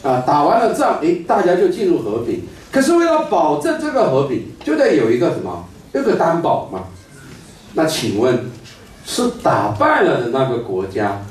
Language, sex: Chinese, male